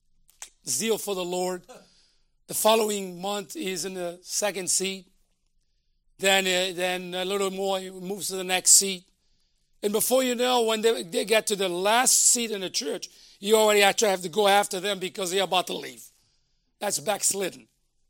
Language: English